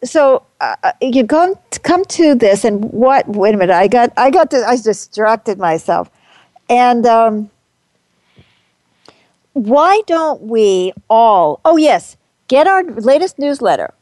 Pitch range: 185-245 Hz